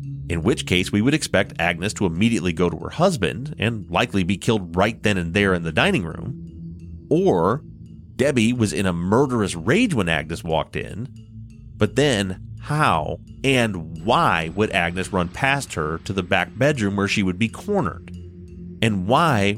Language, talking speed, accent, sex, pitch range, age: English, 175 wpm, American, male, 90-135 Hz, 30-49